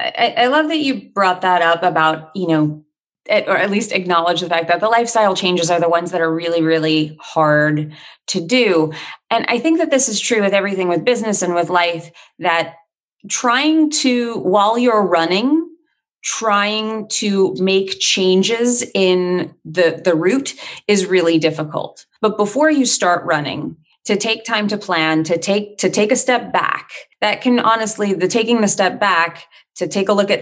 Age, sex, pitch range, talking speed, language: 30-49, female, 170-220 Hz, 180 wpm, English